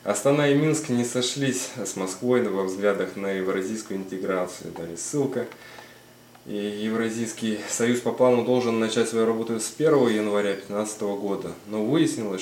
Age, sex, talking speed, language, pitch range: 20-39, male, 135 wpm, Russian, 95-120 Hz